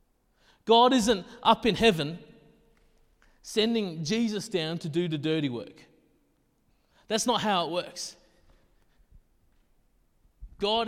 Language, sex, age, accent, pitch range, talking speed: English, male, 30-49, Australian, 160-210 Hz, 105 wpm